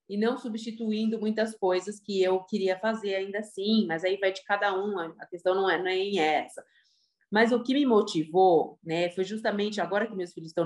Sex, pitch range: female, 185-235 Hz